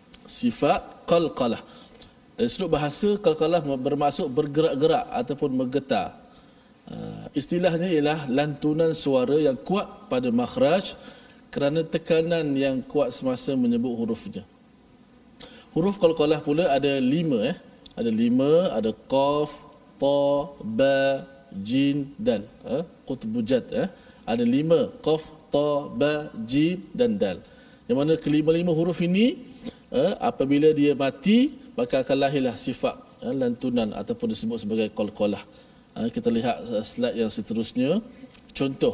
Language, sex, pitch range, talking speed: Malayalam, male, 150-245 Hz, 115 wpm